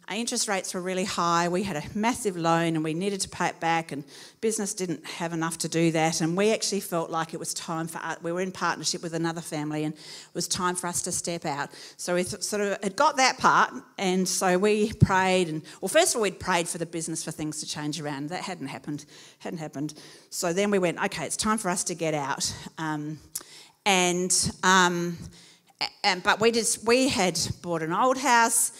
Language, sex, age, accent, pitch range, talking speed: English, female, 40-59, Australian, 165-215 Hz, 225 wpm